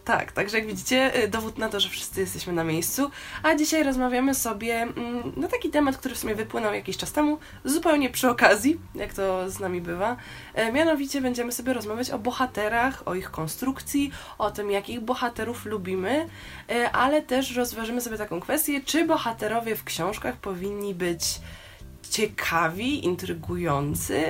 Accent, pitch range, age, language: native, 185-260 Hz, 20-39, Polish